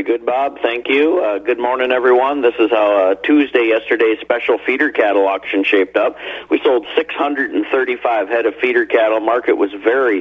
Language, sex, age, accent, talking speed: English, male, 50-69, American, 175 wpm